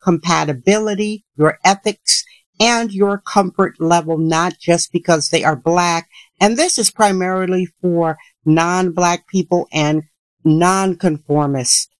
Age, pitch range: 60-79, 155-195 Hz